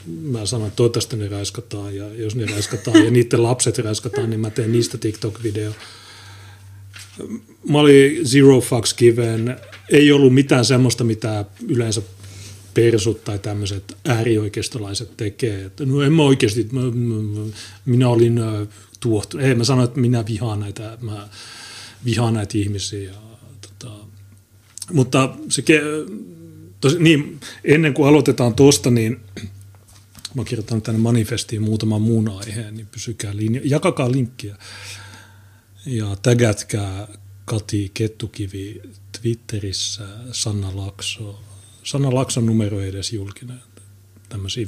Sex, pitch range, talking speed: male, 100-120 Hz, 130 wpm